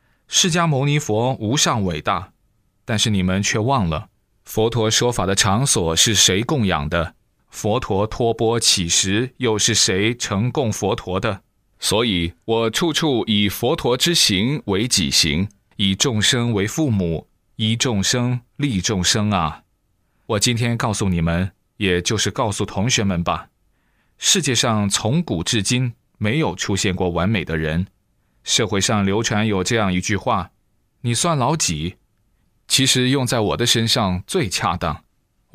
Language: Chinese